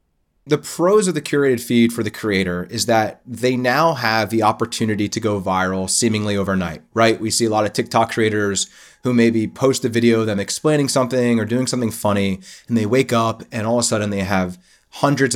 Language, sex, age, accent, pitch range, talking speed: English, male, 30-49, American, 105-130 Hz, 210 wpm